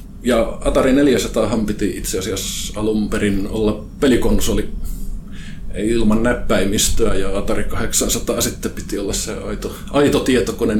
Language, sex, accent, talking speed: Finnish, male, native, 120 wpm